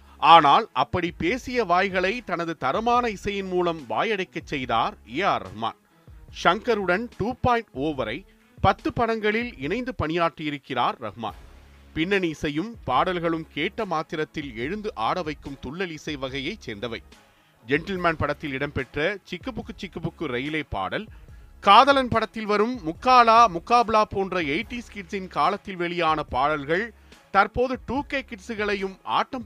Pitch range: 140-210 Hz